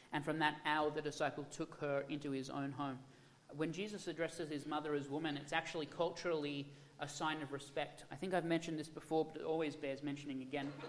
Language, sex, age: English, male, 30-49